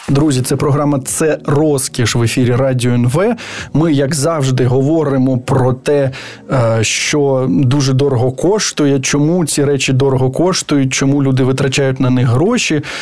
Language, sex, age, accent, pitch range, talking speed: Ukrainian, male, 20-39, native, 135-170 Hz, 140 wpm